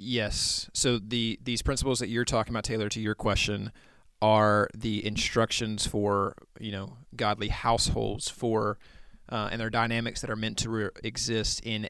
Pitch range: 105-125 Hz